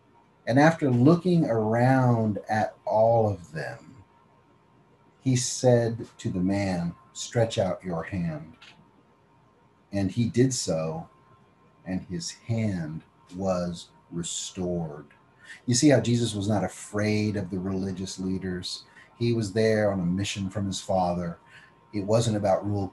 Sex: male